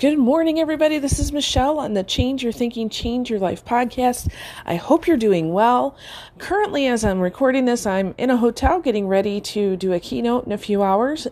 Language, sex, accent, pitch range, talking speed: English, female, American, 180-245 Hz, 205 wpm